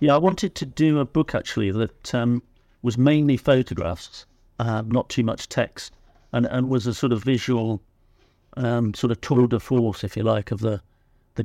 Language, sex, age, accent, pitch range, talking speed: English, male, 50-69, British, 100-120 Hz, 195 wpm